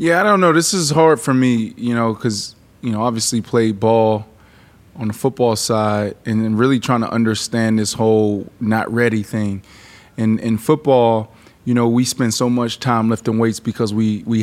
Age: 20-39